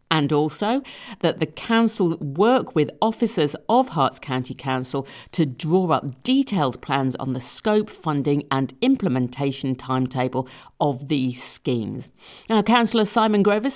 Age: 50-69